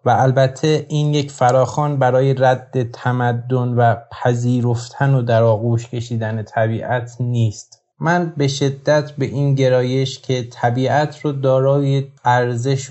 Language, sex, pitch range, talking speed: Persian, male, 120-140 Hz, 125 wpm